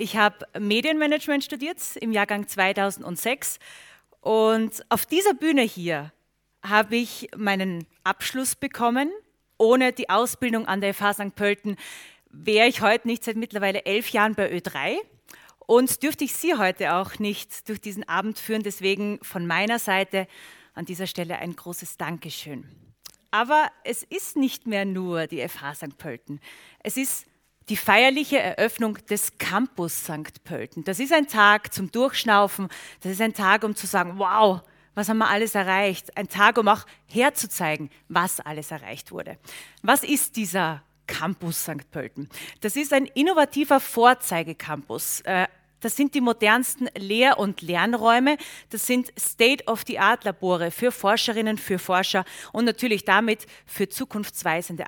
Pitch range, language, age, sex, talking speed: 185-240 Hz, German, 30-49, female, 145 wpm